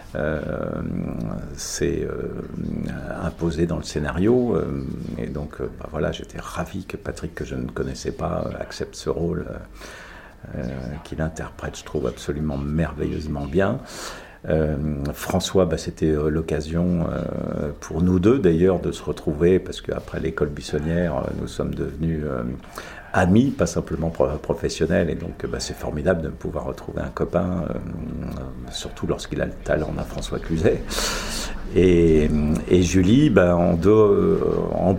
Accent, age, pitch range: French, 50-69, 75-90 Hz